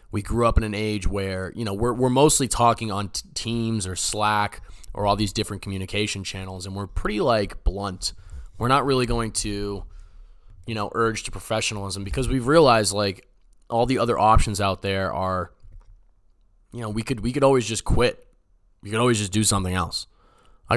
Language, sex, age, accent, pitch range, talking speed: English, male, 20-39, American, 95-115 Hz, 195 wpm